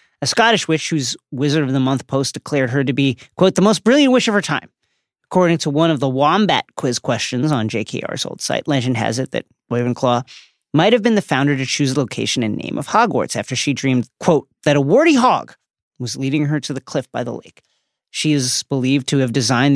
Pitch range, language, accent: 125-155 Hz, English, American